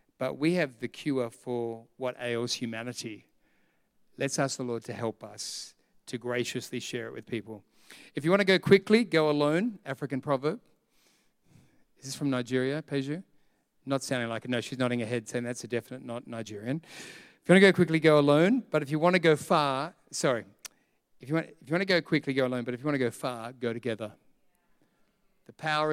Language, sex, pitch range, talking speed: English, male, 120-150 Hz, 210 wpm